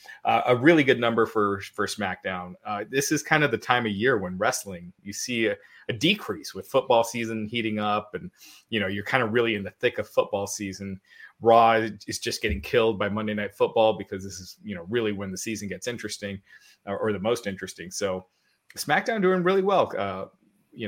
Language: English